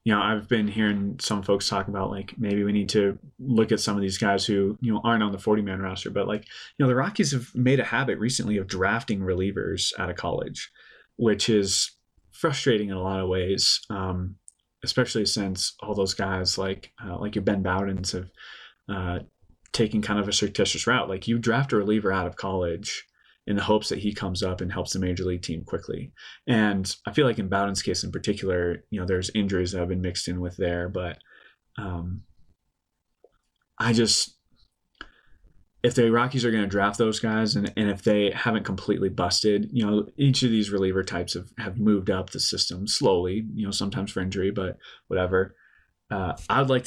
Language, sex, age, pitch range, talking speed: English, male, 30-49, 95-110 Hz, 205 wpm